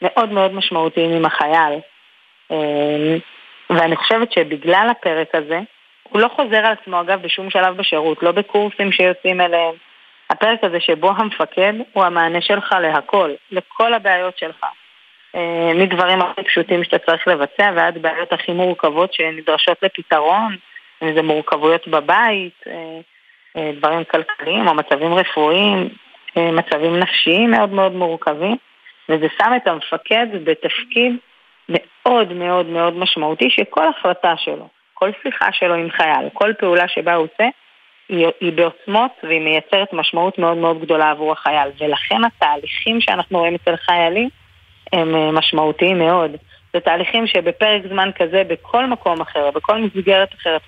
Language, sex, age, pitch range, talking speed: Hebrew, female, 20-39, 165-195 Hz, 135 wpm